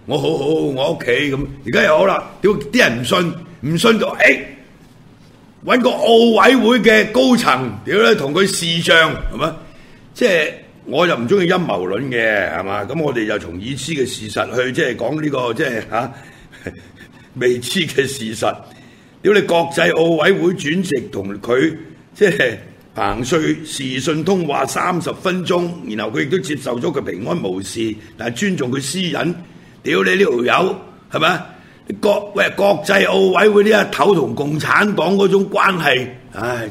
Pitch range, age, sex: 150-215 Hz, 60-79, male